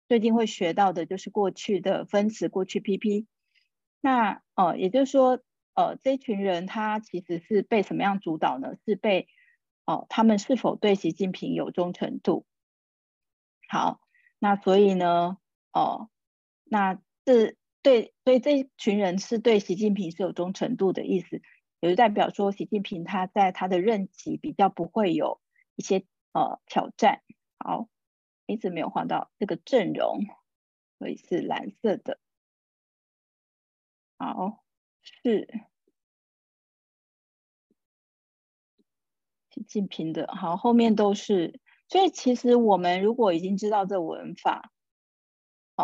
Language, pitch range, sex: Chinese, 185-235 Hz, female